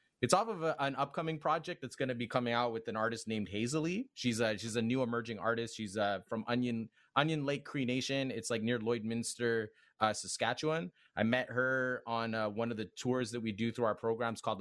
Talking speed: 225 wpm